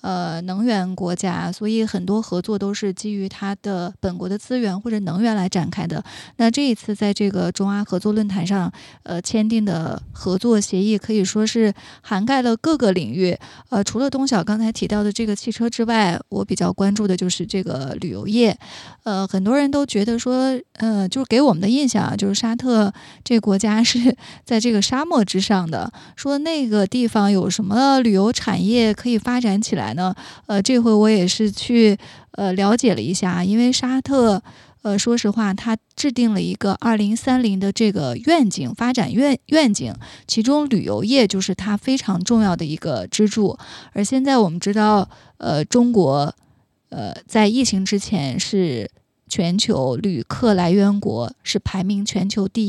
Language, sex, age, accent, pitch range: Chinese, female, 20-39, native, 195-230 Hz